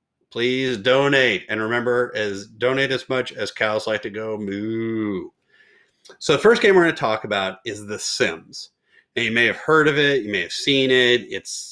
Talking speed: 195 wpm